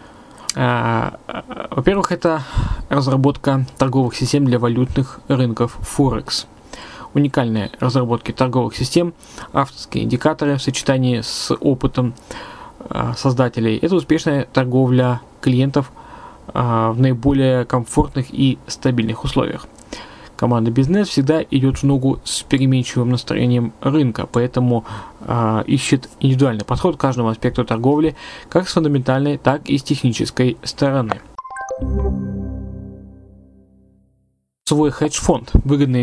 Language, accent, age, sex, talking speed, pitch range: Russian, native, 20-39, male, 100 wpm, 125-150 Hz